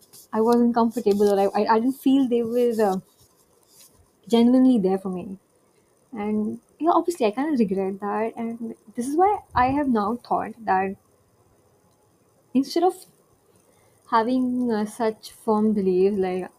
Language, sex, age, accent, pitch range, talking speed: English, female, 20-39, Indian, 195-235 Hz, 140 wpm